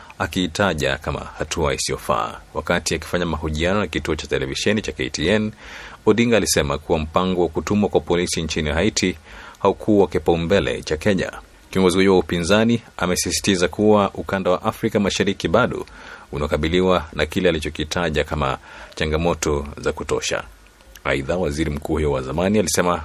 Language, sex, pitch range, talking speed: Swahili, male, 80-95 Hz, 140 wpm